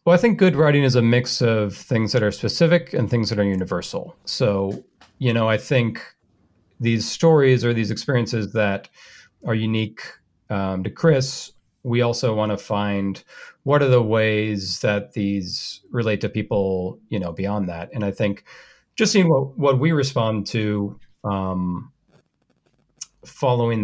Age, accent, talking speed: 40-59, American, 160 wpm